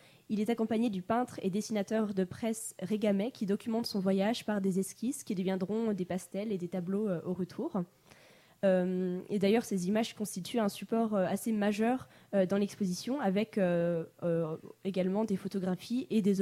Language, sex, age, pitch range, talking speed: French, female, 20-39, 185-220 Hz, 180 wpm